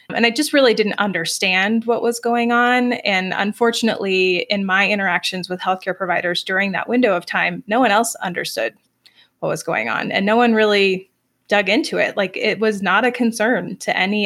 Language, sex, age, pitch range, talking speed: English, female, 20-39, 195-240 Hz, 195 wpm